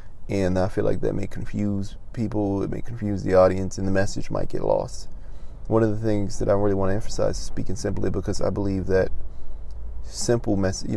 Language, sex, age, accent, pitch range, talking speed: English, male, 20-39, American, 90-100 Hz, 210 wpm